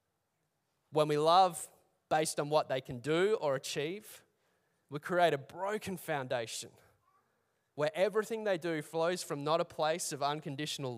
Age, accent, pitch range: 20-39, Australian, 145-195 Hz